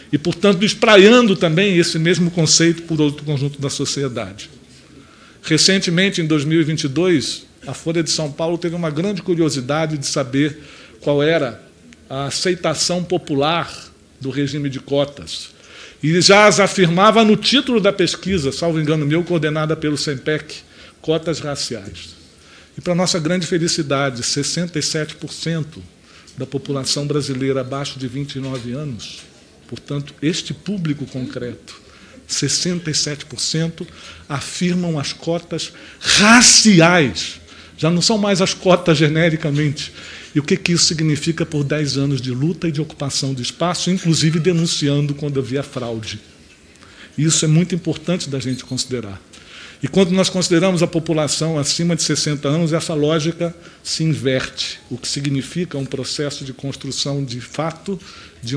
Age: 50-69